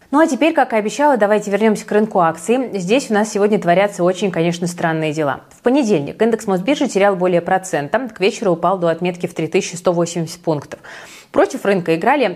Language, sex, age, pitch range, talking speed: Russian, female, 20-39, 170-220 Hz, 185 wpm